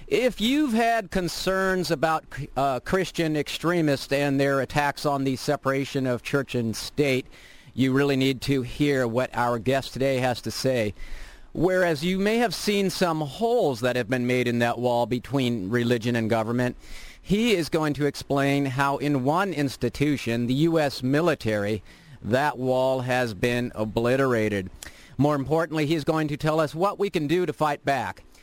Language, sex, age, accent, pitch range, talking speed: English, male, 50-69, American, 130-165 Hz, 165 wpm